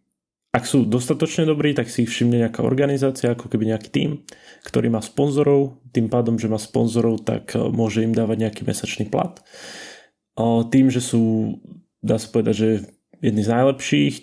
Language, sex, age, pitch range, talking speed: Slovak, male, 20-39, 105-120 Hz, 165 wpm